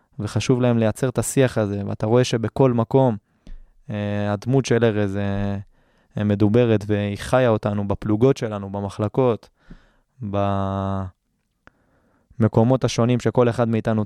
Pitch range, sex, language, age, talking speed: 105-120 Hz, male, Hebrew, 20-39, 115 wpm